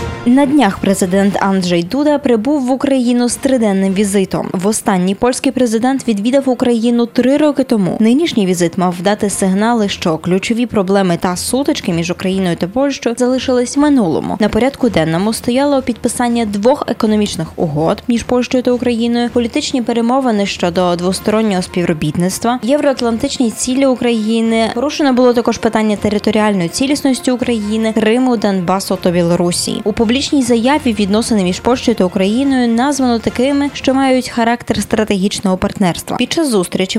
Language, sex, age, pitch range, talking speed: Polish, female, 20-39, 195-255 Hz, 140 wpm